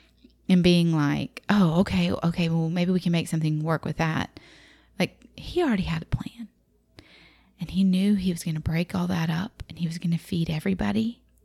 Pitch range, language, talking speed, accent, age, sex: 170-210 Hz, English, 205 wpm, American, 30-49, female